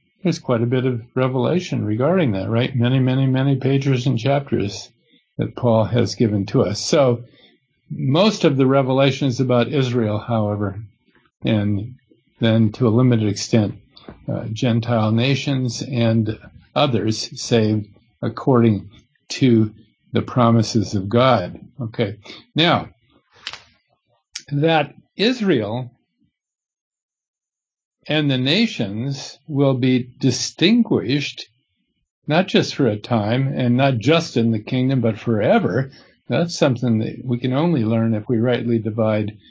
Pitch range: 115-140 Hz